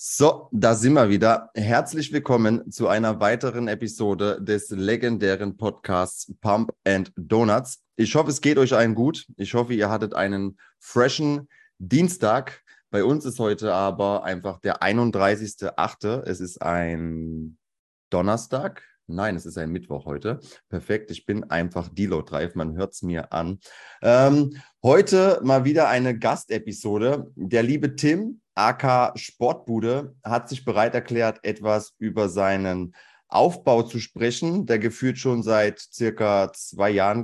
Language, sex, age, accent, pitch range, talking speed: German, male, 30-49, German, 95-130 Hz, 140 wpm